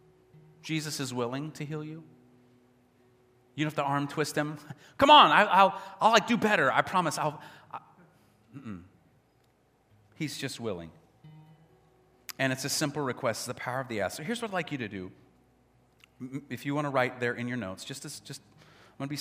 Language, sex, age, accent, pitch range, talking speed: English, male, 40-59, American, 120-155 Hz, 195 wpm